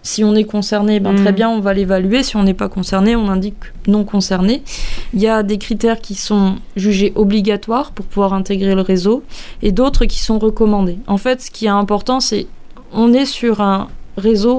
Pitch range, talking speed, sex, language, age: 200-235 Hz, 205 wpm, female, French, 20-39